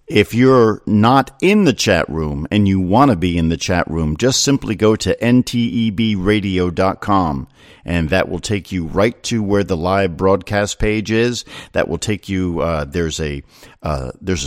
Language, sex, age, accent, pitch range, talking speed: English, male, 50-69, American, 90-115 Hz, 180 wpm